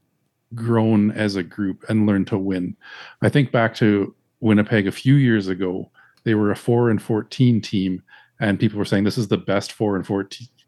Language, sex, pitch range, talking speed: English, male, 100-115 Hz, 185 wpm